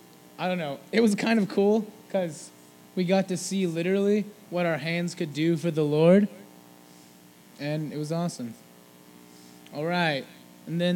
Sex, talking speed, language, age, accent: male, 165 wpm, English, 20-39, American